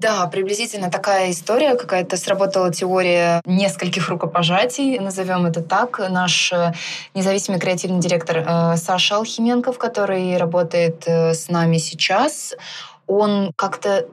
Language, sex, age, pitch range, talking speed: Russian, female, 20-39, 175-205 Hz, 115 wpm